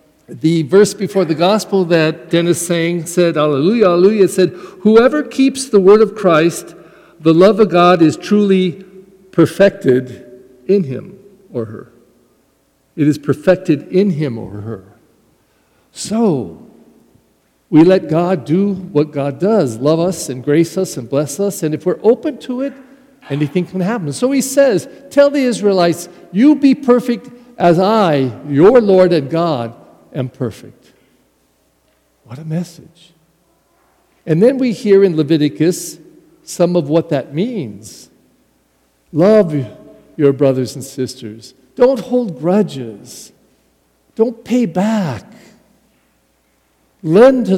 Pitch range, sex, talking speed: 140-195 Hz, male, 135 wpm